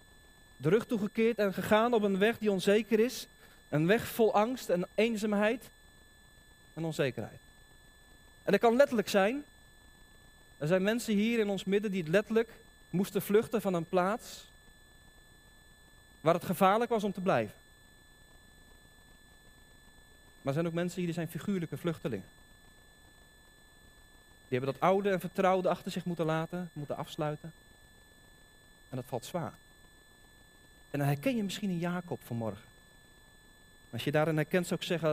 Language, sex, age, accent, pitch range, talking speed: Dutch, male, 40-59, Dutch, 150-210 Hz, 150 wpm